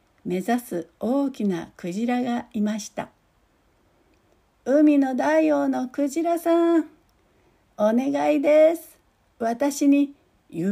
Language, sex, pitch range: Japanese, female, 210-275 Hz